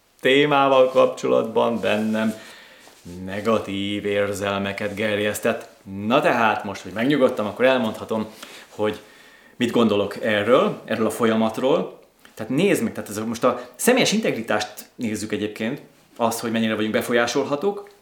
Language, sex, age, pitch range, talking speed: Hungarian, male, 30-49, 105-145 Hz, 125 wpm